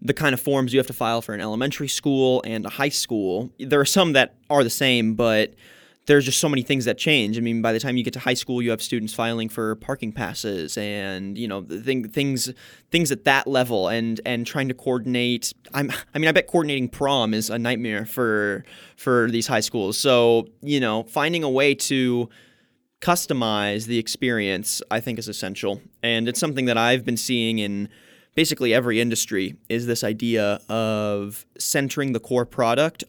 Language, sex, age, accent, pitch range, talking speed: English, male, 20-39, American, 110-135 Hz, 200 wpm